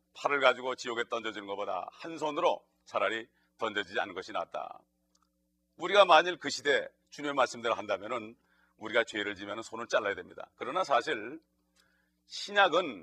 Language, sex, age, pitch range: Korean, male, 40-59, 100-145 Hz